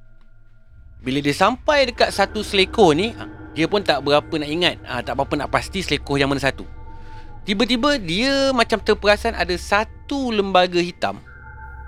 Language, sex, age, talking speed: Malay, male, 30-49, 150 wpm